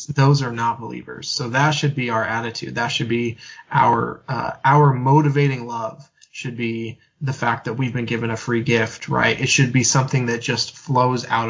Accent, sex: American, male